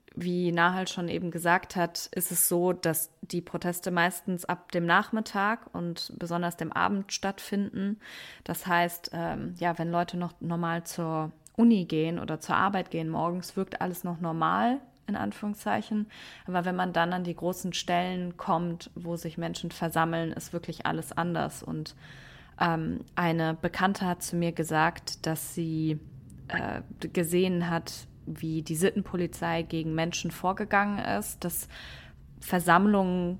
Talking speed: 145 wpm